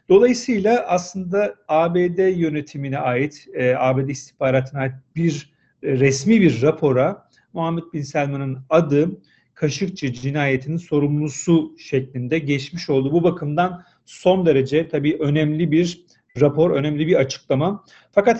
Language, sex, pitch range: Turkish, male, 135-185 Hz